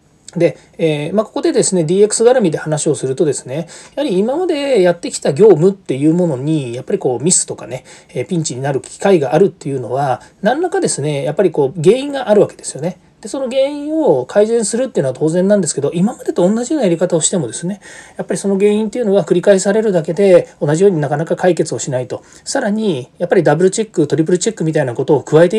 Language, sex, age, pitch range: Japanese, male, 40-59, 145-205 Hz